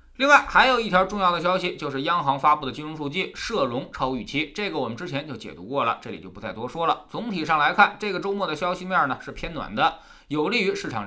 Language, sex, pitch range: Chinese, male, 130-215 Hz